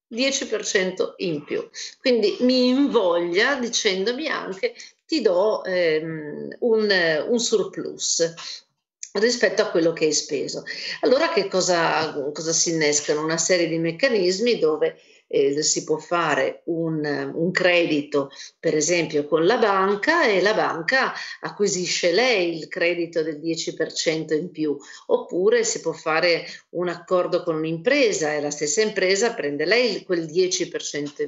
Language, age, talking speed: Italian, 50-69, 130 wpm